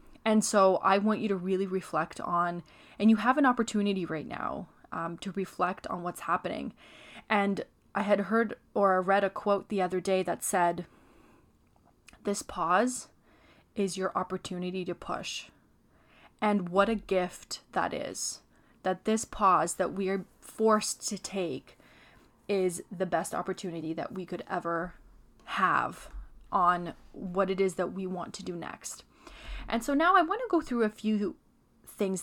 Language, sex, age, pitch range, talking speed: English, female, 20-39, 180-210 Hz, 160 wpm